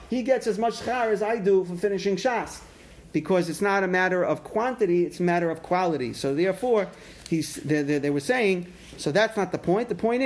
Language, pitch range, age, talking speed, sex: English, 155-200 Hz, 40-59, 215 wpm, male